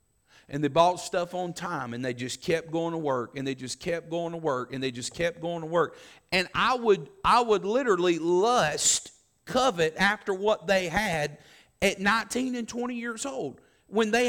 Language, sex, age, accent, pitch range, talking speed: English, male, 40-59, American, 165-230 Hz, 195 wpm